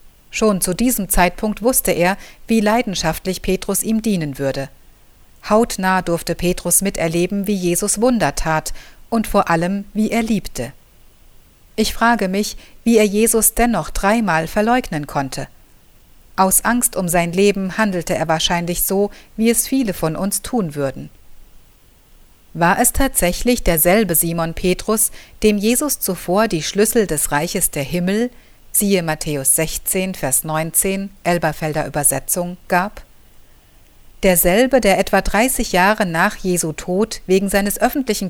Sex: female